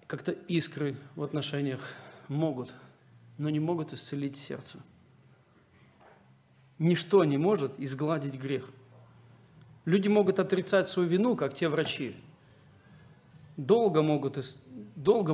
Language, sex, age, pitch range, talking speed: Russian, male, 40-59, 145-185 Hz, 95 wpm